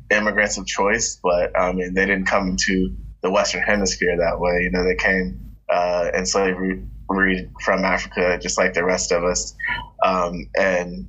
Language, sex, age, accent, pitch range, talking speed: English, male, 20-39, American, 90-95 Hz, 170 wpm